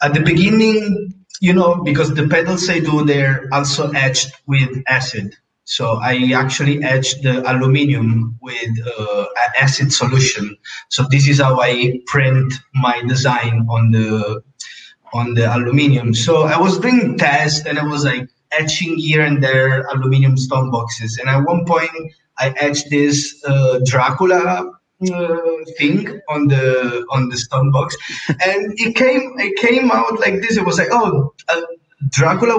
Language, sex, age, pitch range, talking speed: English, male, 20-39, 130-165 Hz, 155 wpm